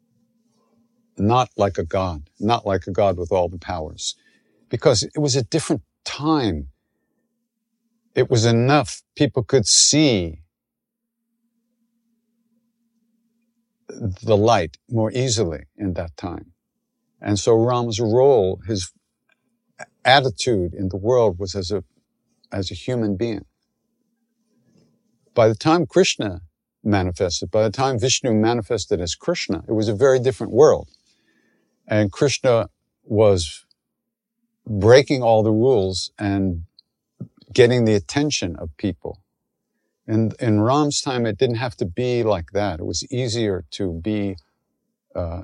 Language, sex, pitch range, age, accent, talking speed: English, male, 95-140 Hz, 50-69, American, 125 wpm